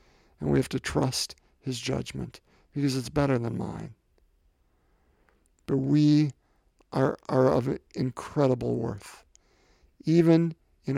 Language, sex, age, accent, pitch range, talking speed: English, male, 50-69, American, 130-160 Hz, 115 wpm